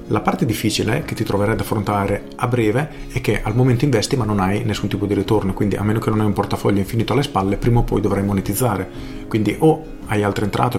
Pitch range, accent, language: 100-120 Hz, native, Italian